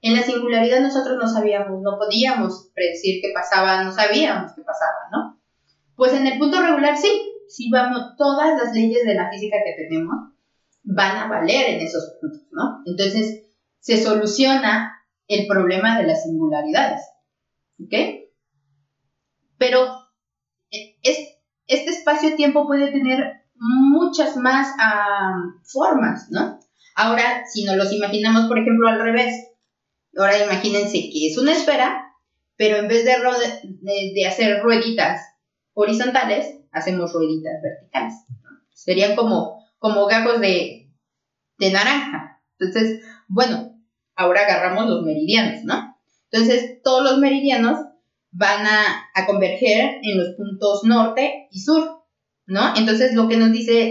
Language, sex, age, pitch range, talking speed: Spanish, female, 30-49, 200-260 Hz, 130 wpm